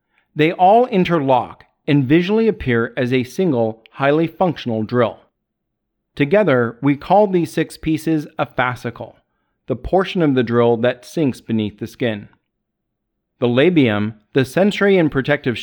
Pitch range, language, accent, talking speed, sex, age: 115-160 Hz, English, American, 140 wpm, male, 40-59